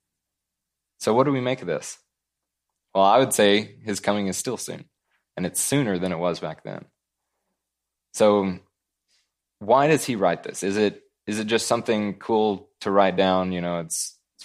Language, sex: English, male